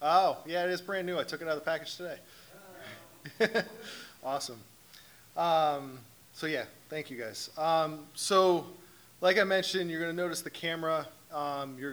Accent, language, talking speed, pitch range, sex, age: American, English, 170 wpm, 140-165 Hz, male, 20-39